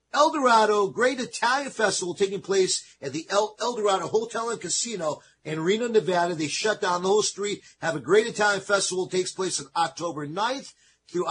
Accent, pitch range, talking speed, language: American, 175-230 Hz, 185 wpm, English